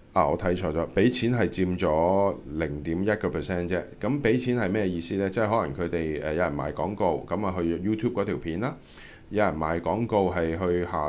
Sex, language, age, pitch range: male, Chinese, 20-39, 80-100 Hz